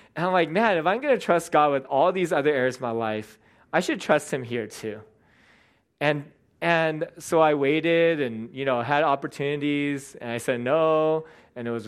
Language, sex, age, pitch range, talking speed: English, male, 20-39, 120-155 Hz, 205 wpm